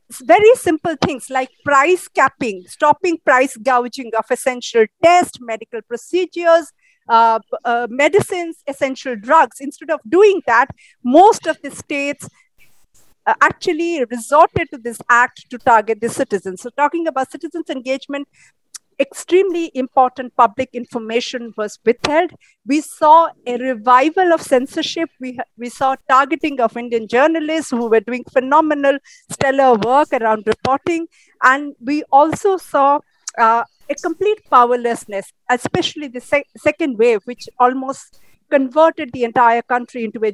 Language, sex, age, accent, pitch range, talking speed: English, female, 50-69, Indian, 240-315 Hz, 130 wpm